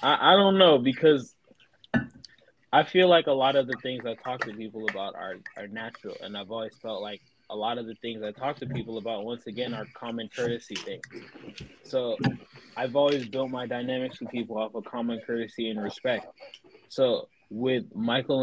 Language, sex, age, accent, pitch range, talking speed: English, male, 20-39, American, 115-140 Hz, 190 wpm